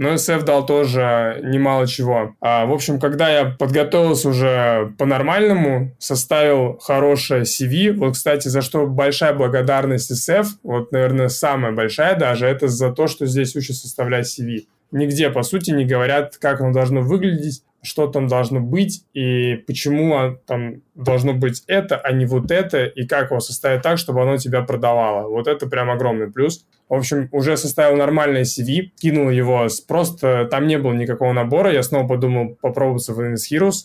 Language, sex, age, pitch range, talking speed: Russian, male, 20-39, 125-145 Hz, 170 wpm